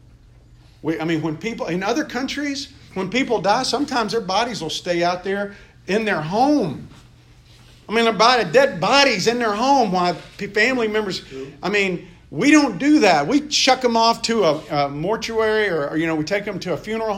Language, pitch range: English, 160-230 Hz